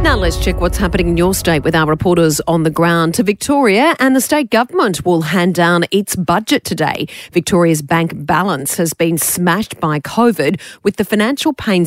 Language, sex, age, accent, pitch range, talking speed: English, female, 40-59, Australian, 115-175 Hz, 190 wpm